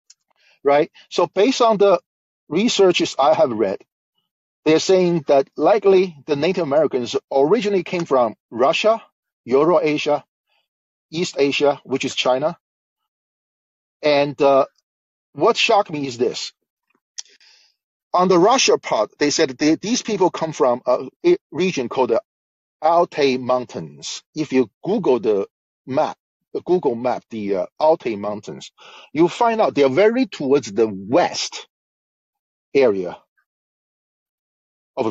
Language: English